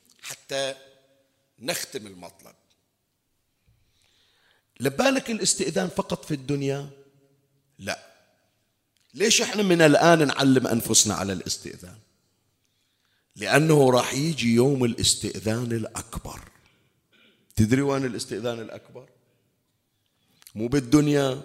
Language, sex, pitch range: Arabic, male, 125-195 Hz